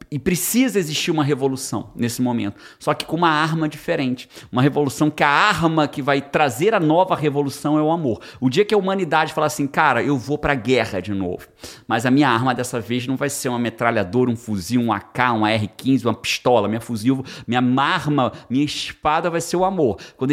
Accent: Brazilian